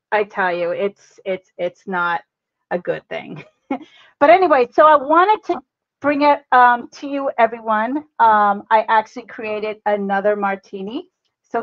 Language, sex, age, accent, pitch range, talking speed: English, female, 40-59, American, 205-290 Hz, 150 wpm